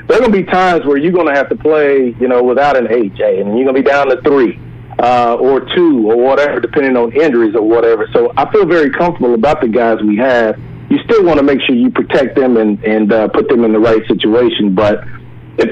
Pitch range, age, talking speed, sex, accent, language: 120-185 Hz, 40-59, 250 wpm, male, American, English